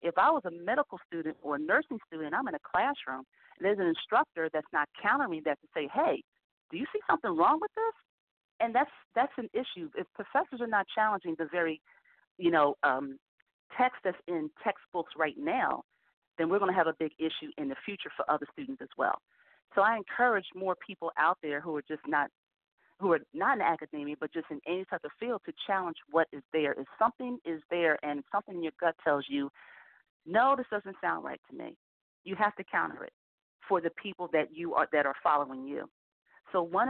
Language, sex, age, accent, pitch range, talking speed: English, female, 40-59, American, 155-215 Hz, 215 wpm